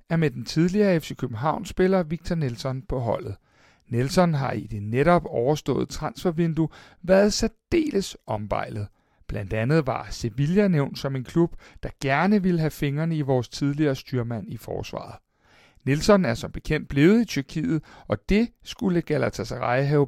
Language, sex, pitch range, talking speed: Danish, male, 130-185 Hz, 155 wpm